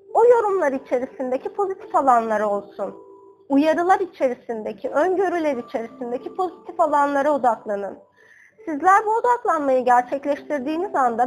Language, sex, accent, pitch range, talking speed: Turkish, female, native, 245-365 Hz, 95 wpm